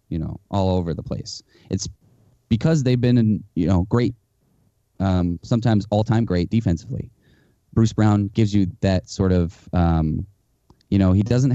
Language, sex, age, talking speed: English, male, 20-39, 155 wpm